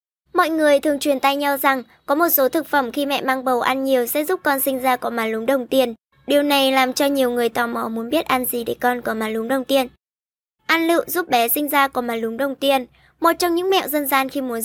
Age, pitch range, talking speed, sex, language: 10-29, 250-295 Hz, 270 wpm, male, Vietnamese